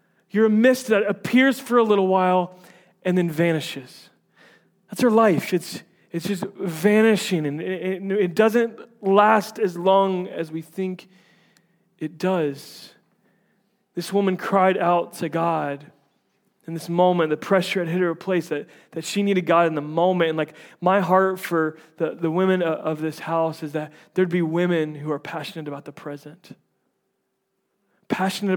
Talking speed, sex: 170 wpm, male